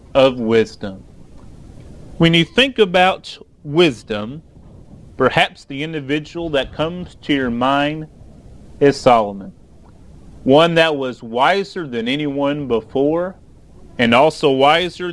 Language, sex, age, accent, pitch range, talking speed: English, male, 30-49, American, 130-170 Hz, 105 wpm